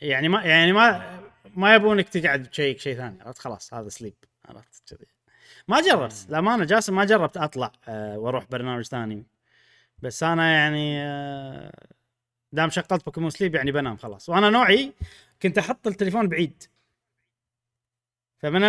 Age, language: 20-39, Arabic